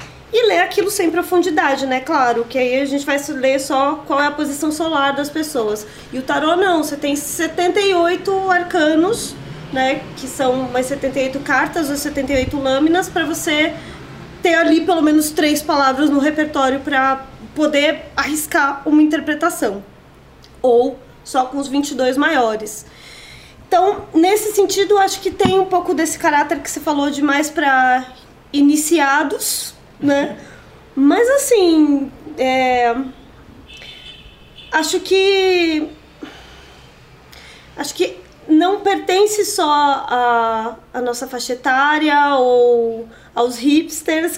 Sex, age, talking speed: female, 20-39, 130 wpm